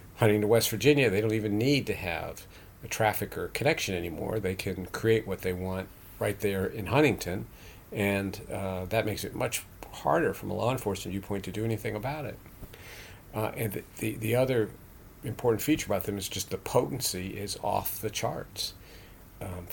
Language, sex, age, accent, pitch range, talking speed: English, male, 50-69, American, 95-115 Hz, 185 wpm